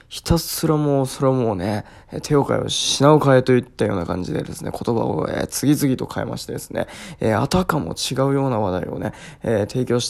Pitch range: 115-150 Hz